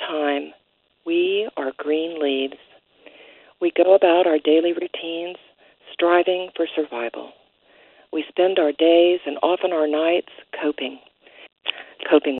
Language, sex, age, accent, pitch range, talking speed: English, female, 50-69, American, 155-195 Hz, 115 wpm